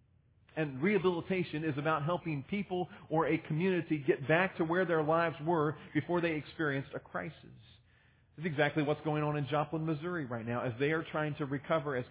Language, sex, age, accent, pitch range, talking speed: English, male, 40-59, American, 120-165 Hz, 195 wpm